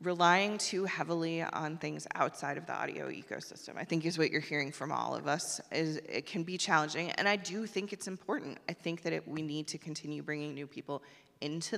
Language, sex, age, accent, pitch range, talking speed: English, female, 30-49, American, 150-175 Hz, 220 wpm